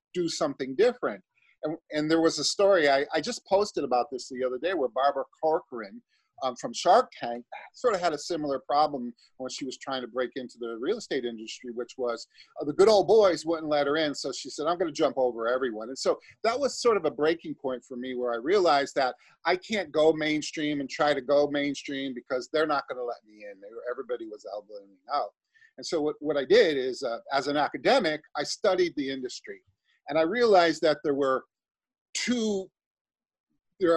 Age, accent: 40-59, American